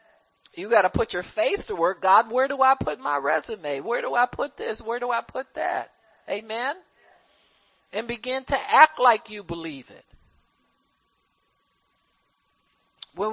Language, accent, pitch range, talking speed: English, American, 225-295 Hz, 160 wpm